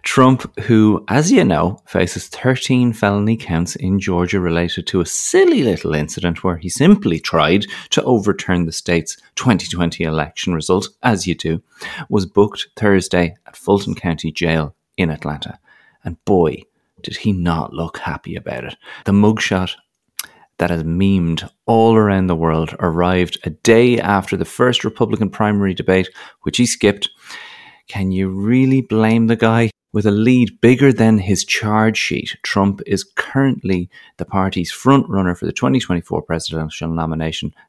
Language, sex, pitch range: English, male, 85-115 Hz